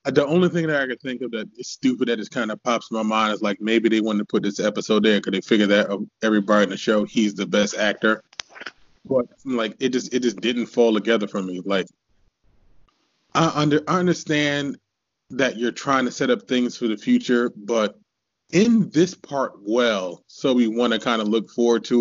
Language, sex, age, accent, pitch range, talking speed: English, male, 20-39, American, 110-155 Hz, 225 wpm